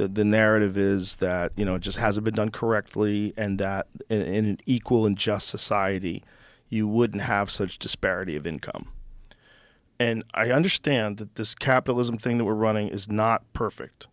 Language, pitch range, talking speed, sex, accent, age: English, 105-125 Hz, 170 wpm, male, American, 40-59